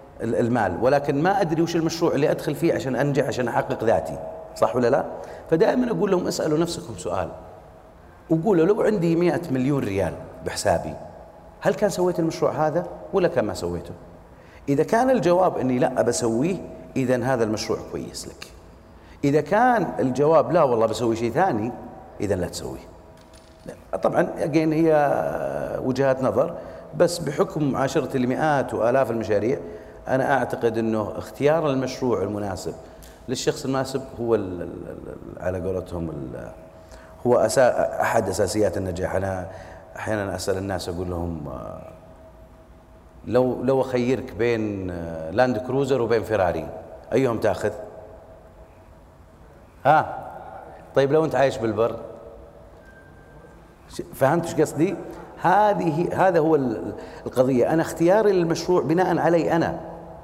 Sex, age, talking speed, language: male, 40-59, 120 wpm, Arabic